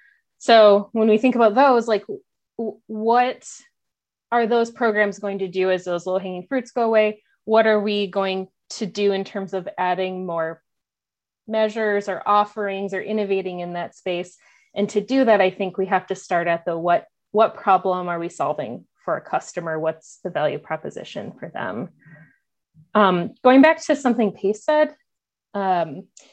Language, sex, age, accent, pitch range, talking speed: English, female, 20-39, American, 190-235 Hz, 170 wpm